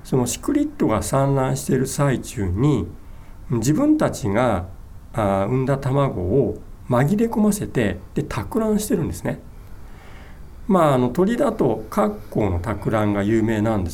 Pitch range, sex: 95-140 Hz, male